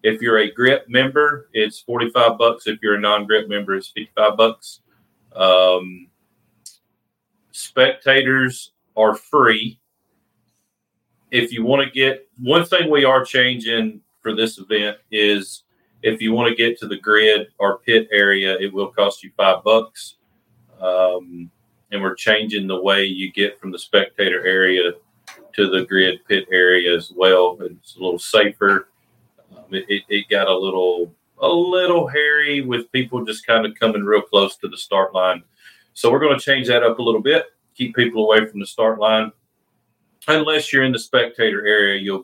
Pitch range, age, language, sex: 100-120 Hz, 40-59, English, male